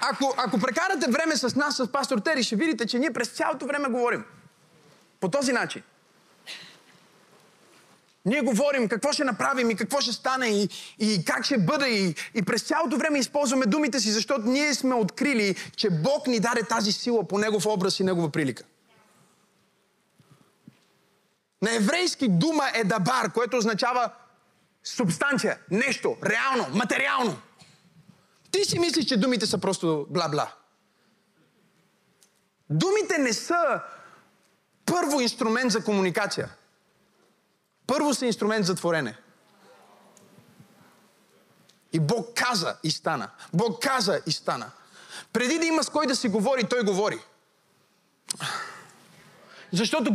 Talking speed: 130 wpm